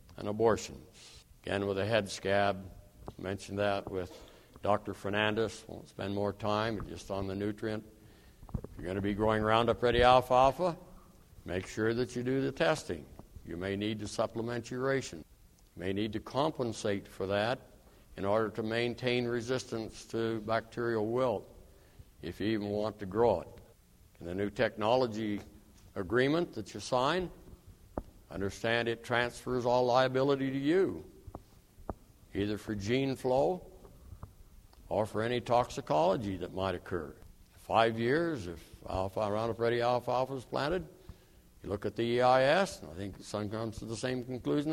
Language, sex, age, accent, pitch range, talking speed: English, male, 60-79, American, 100-125 Hz, 160 wpm